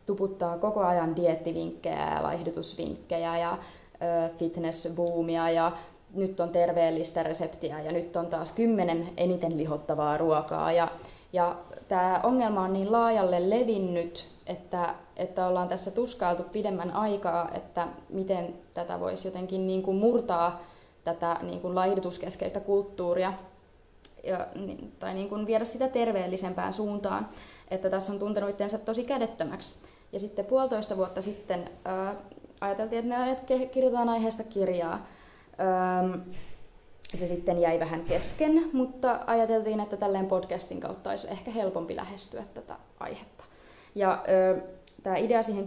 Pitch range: 175-210 Hz